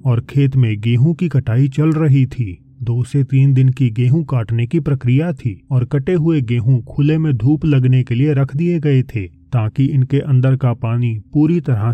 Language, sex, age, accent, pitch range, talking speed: Hindi, male, 30-49, native, 120-145 Hz, 200 wpm